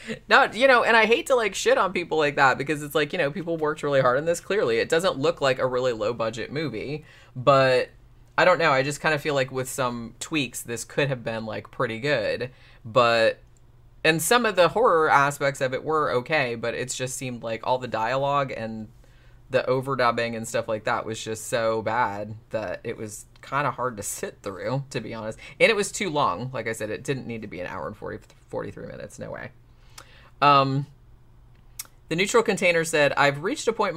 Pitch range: 120-155 Hz